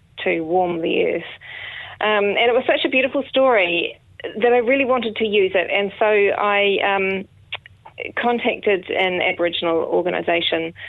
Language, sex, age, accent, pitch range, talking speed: English, female, 20-39, Australian, 165-205 Hz, 150 wpm